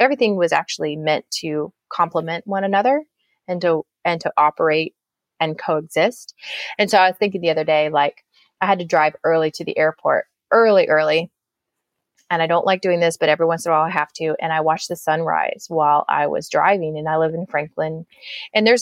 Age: 30-49